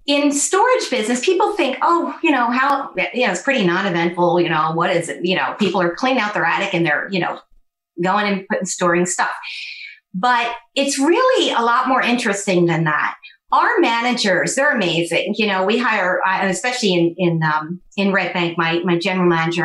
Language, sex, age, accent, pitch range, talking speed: English, female, 40-59, American, 180-280 Hz, 190 wpm